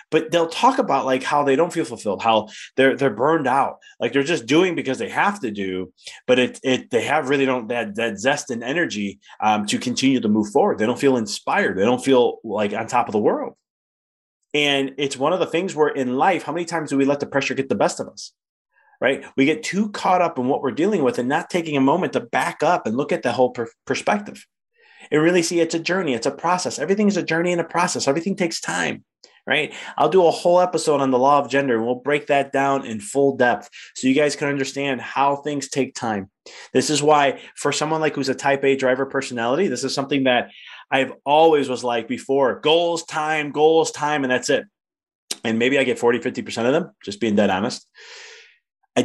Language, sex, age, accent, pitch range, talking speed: English, male, 30-49, American, 125-165 Hz, 230 wpm